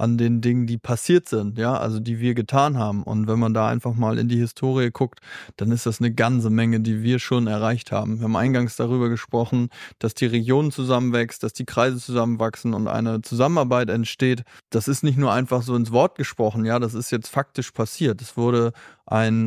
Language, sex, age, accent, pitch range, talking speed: German, male, 20-39, German, 120-135 Hz, 210 wpm